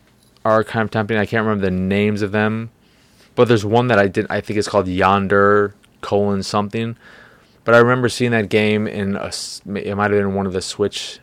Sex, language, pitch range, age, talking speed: male, English, 90-105 Hz, 20-39, 215 wpm